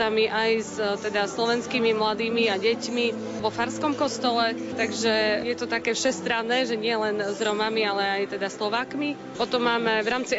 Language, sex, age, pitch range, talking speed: Slovak, female, 20-39, 215-245 Hz, 155 wpm